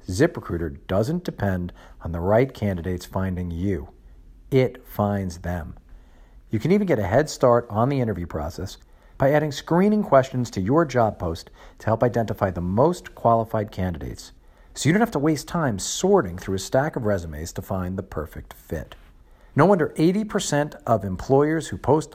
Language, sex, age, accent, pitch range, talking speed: English, male, 50-69, American, 90-145 Hz, 170 wpm